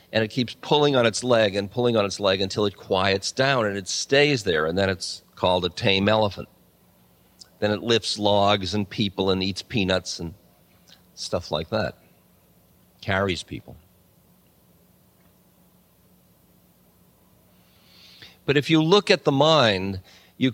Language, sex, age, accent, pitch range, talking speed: English, male, 50-69, American, 100-145 Hz, 145 wpm